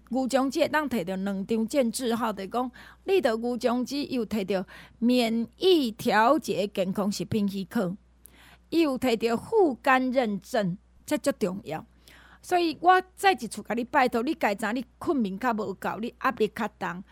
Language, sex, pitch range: Chinese, female, 205-270 Hz